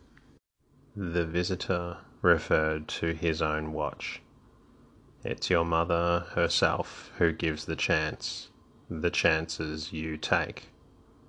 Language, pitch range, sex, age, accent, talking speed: English, 80-90 Hz, male, 30-49, Australian, 100 wpm